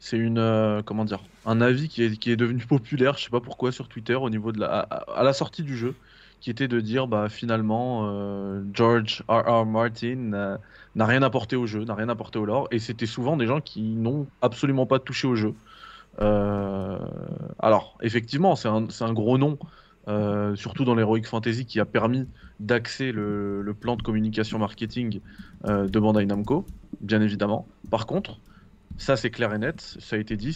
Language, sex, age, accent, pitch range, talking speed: French, male, 20-39, French, 105-125 Hz, 205 wpm